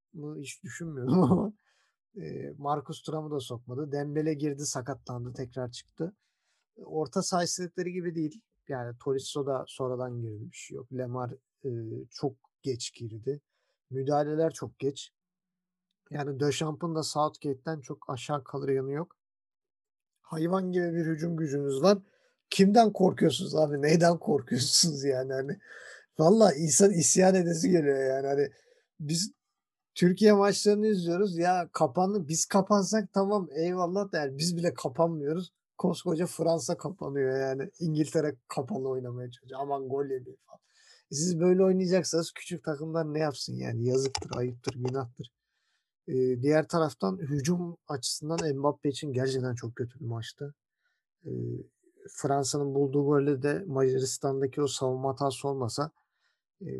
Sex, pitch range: male, 135-175 Hz